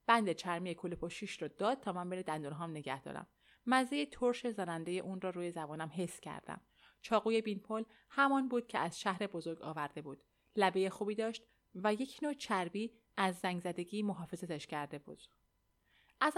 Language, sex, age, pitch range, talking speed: Persian, female, 30-49, 170-230 Hz, 160 wpm